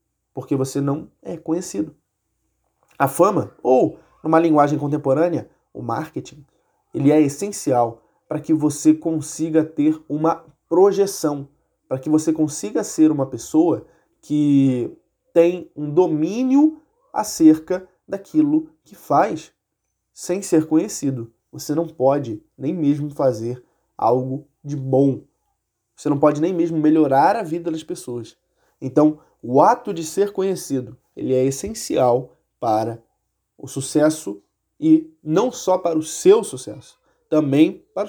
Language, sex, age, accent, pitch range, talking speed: Portuguese, male, 20-39, Brazilian, 140-175 Hz, 130 wpm